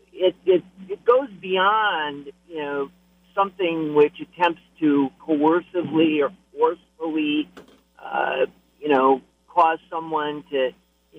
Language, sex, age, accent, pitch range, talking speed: English, male, 50-69, American, 145-200 Hz, 115 wpm